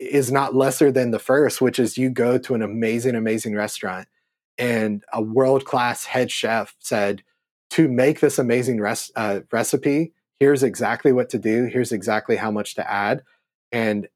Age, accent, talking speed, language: 30-49, American, 170 wpm, English